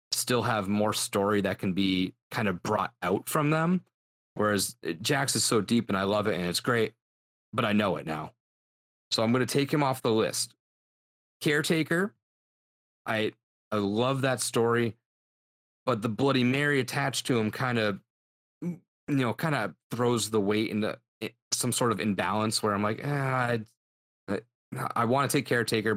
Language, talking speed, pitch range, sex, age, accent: English, 180 wpm, 95-125 Hz, male, 30-49, American